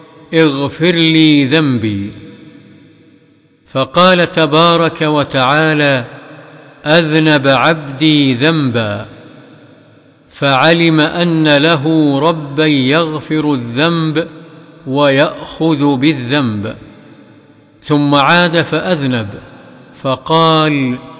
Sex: male